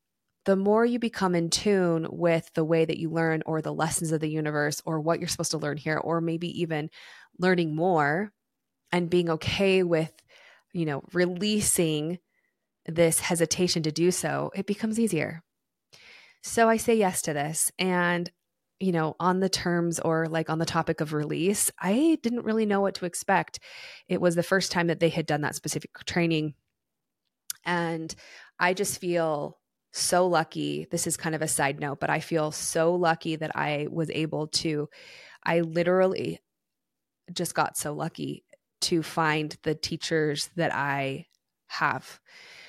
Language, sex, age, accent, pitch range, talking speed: English, female, 20-39, American, 155-180 Hz, 165 wpm